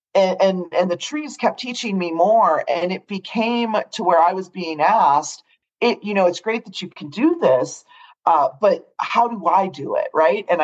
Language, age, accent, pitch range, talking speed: English, 40-59, American, 170-245 Hz, 210 wpm